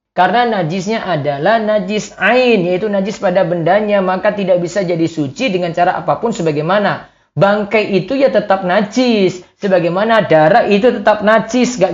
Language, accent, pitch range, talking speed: Indonesian, native, 170-230 Hz, 145 wpm